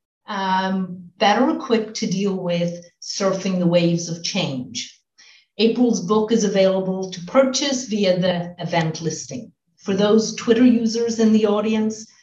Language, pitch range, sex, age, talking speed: English, 175-215 Hz, female, 50-69, 135 wpm